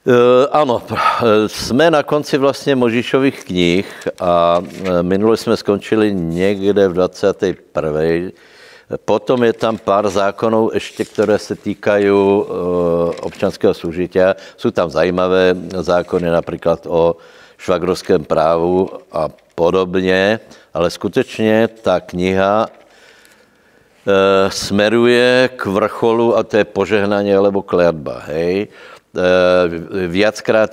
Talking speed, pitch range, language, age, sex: 100 wpm, 90-105 Hz, Slovak, 60-79, male